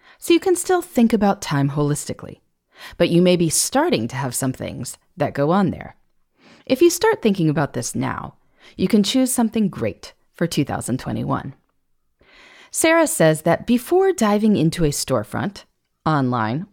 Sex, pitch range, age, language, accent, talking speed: female, 140-230 Hz, 30-49, English, American, 160 wpm